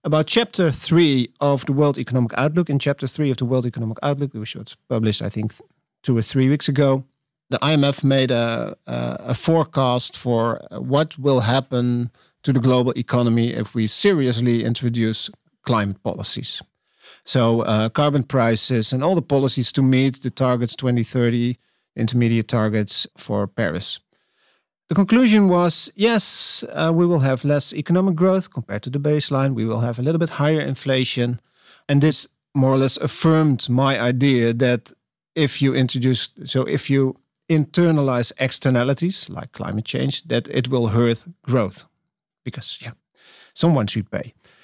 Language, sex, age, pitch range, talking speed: English, male, 50-69, 120-150 Hz, 155 wpm